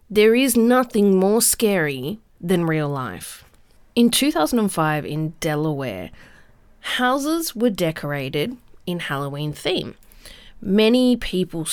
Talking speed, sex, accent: 100 wpm, female, Australian